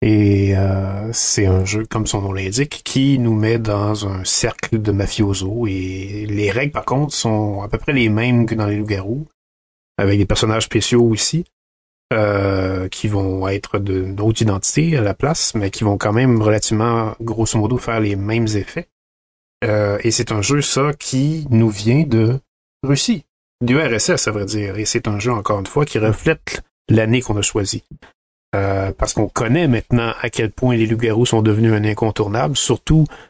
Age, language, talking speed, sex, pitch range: 30-49, French, 185 wpm, male, 100-120 Hz